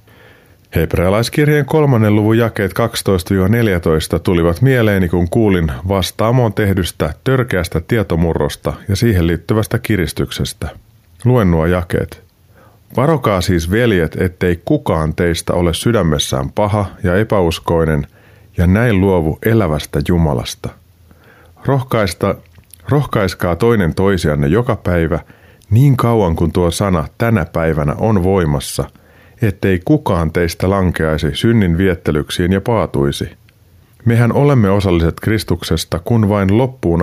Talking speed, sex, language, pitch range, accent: 105 wpm, male, Finnish, 85-110 Hz, native